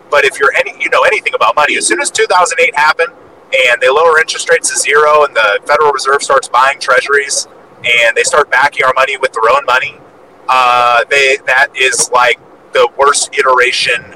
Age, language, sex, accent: 30-49, English, male, American